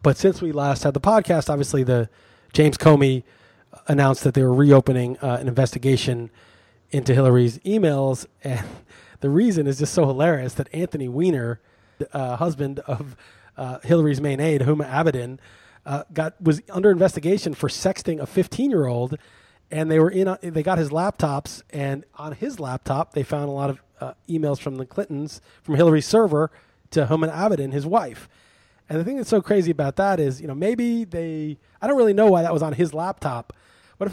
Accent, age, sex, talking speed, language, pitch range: American, 30-49, male, 190 wpm, English, 135-170 Hz